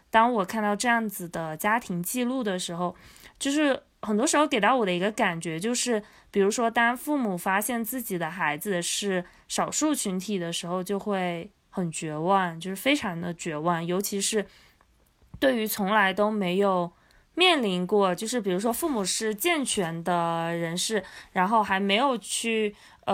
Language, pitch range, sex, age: Chinese, 180-225 Hz, female, 20-39